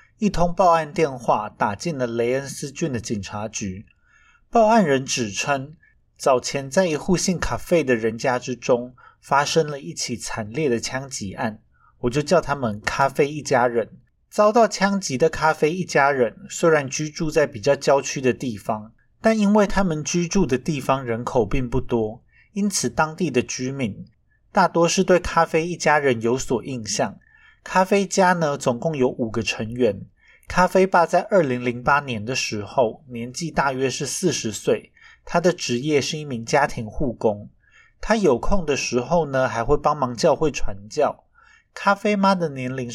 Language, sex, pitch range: Chinese, male, 125-170 Hz